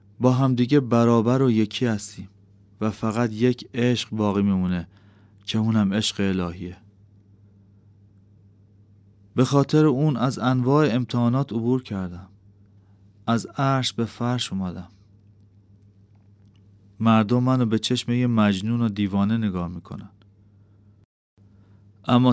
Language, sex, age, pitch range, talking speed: Persian, male, 30-49, 100-120 Hz, 105 wpm